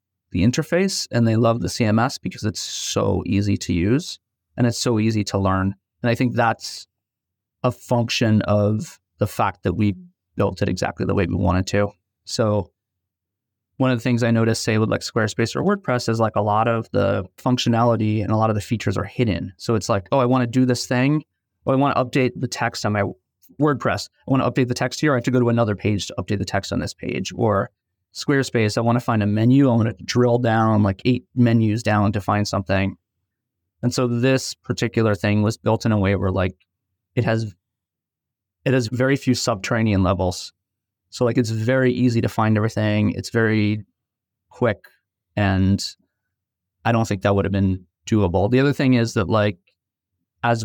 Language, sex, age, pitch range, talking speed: English, male, 30-49, 100-120 Hz, 205 wpm